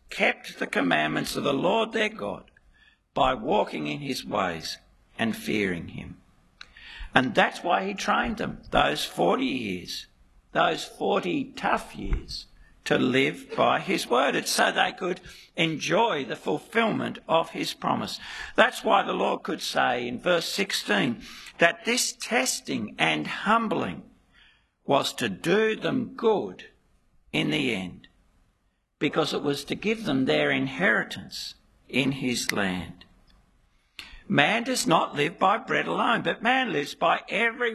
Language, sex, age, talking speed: English, male, 60-79, 140 wpm